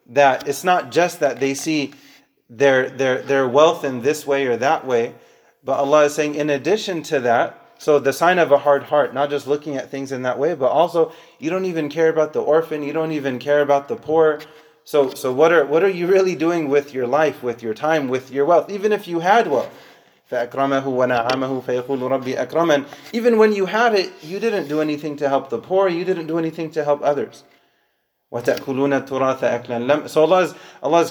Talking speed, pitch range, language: 200 wpm, 125-155 Hz, English